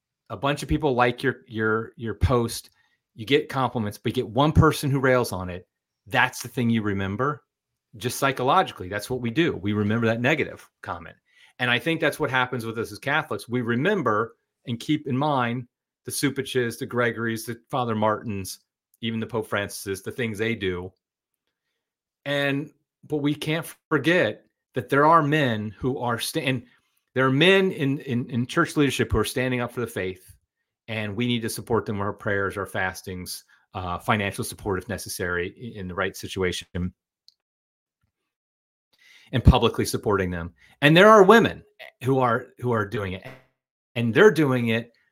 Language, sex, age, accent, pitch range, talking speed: English, male, 30-49, American, 105-130 Hz, 175 wpm